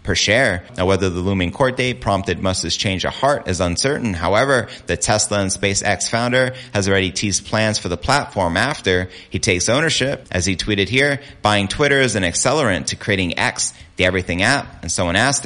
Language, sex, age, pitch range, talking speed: English, male, 30-49, 90-110 Hz, 195 wpm